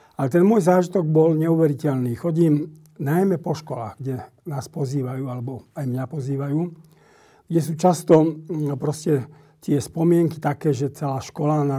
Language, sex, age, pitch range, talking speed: Slovak, male, 50-69, 140-165 Hz, 135 wpm